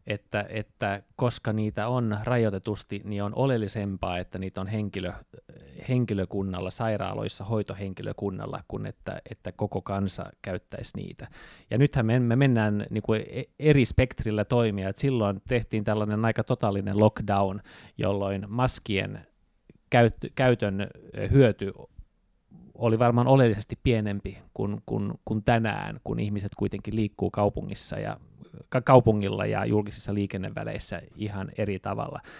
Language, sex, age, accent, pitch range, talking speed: Finnish, male, 30-49, native, 100-120 Hz, 120 wpm